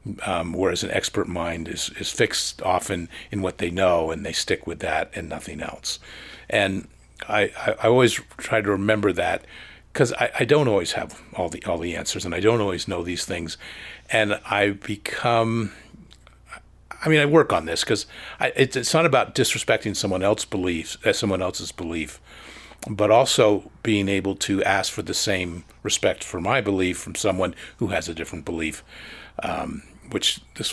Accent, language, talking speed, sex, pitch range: American, English, 185 wpm, male, 90-110 Hz